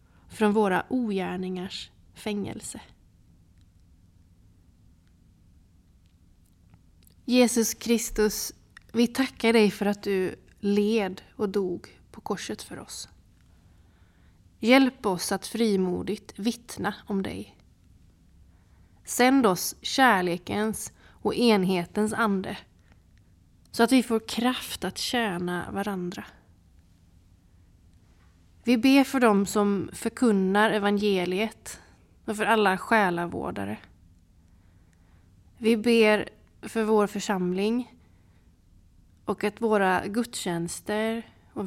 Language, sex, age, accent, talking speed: Swedish, female, 30-49, native, 90 wpm